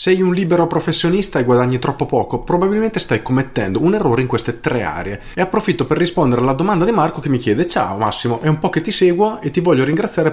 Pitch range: 120-175 Hz